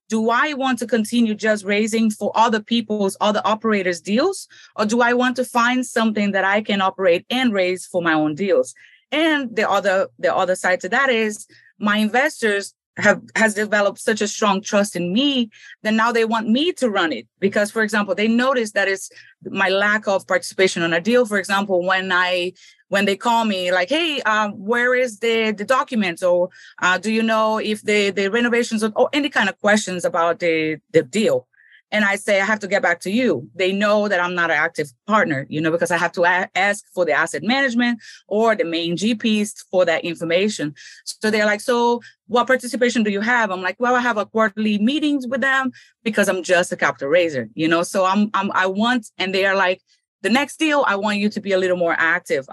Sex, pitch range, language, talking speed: female, 180-230 Hz, English, 220 wpm